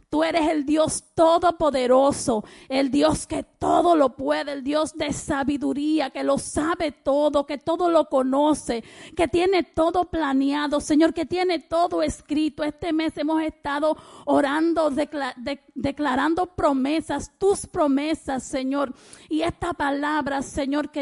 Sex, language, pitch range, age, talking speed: female, Spanish, 265-315 Hz, 40-59, 135 wpm